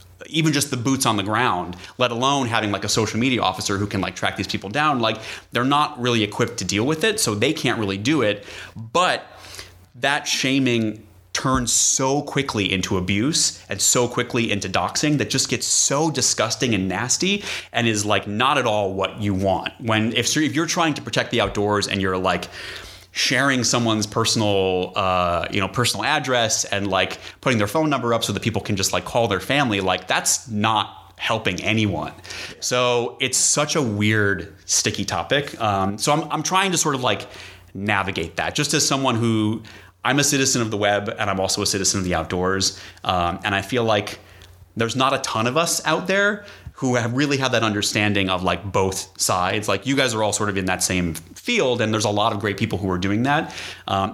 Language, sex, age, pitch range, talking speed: English, male, 30-49, 95-125 Hz, 210 wpm